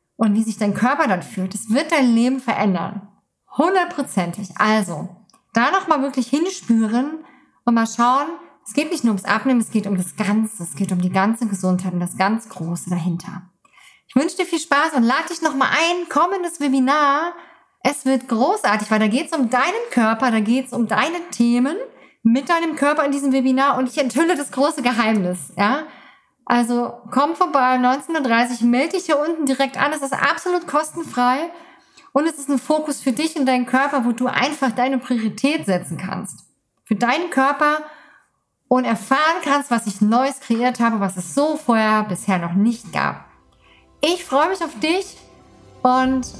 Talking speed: 180 wpm